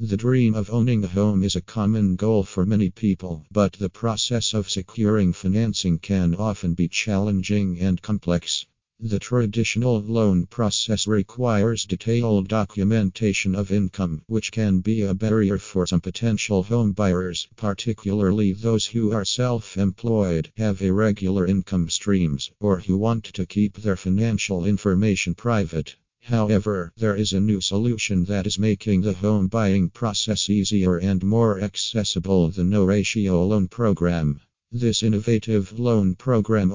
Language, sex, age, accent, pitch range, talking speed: English, male, 50-69, American, 95-110 Hz, 140 wpm